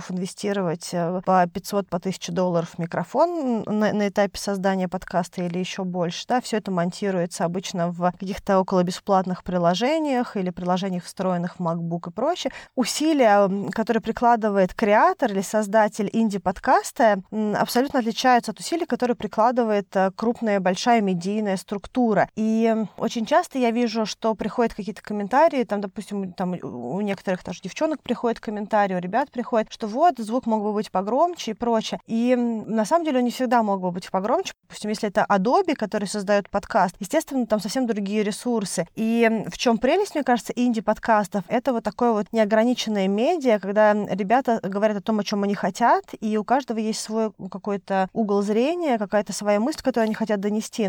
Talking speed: 165 wpm